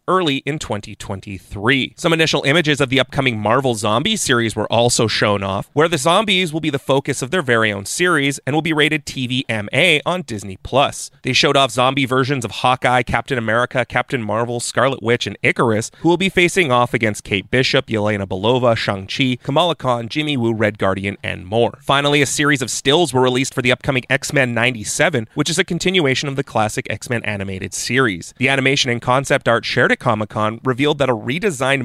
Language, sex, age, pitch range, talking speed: English, male, 30-49, 110-145 Hz, 190 wpm